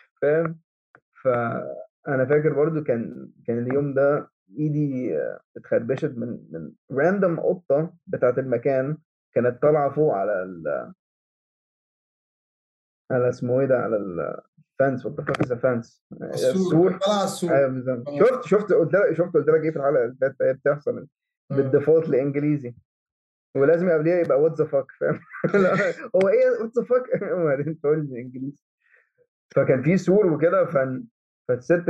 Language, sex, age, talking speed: Arabic, male, 20-39, 135 wpm